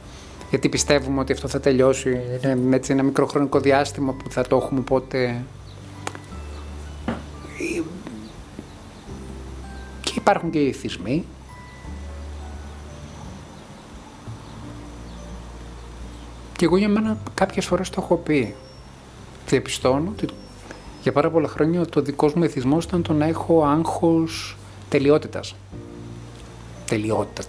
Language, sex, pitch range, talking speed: Greek, male, 80-140 Hz, 105 wpm